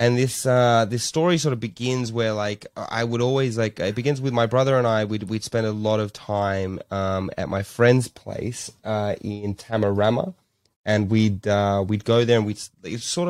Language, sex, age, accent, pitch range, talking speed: English, male, 20-39, Australian, 95-115 Hz, 210 wpm